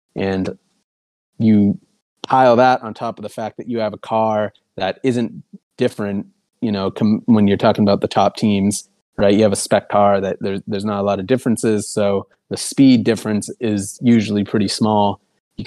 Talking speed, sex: 190 wpm, male